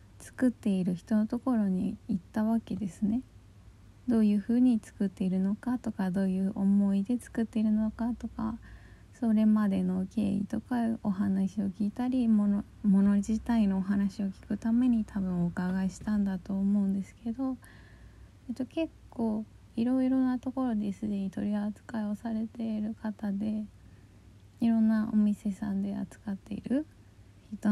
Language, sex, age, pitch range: Japanese, female, 20-39, 190-230 Hz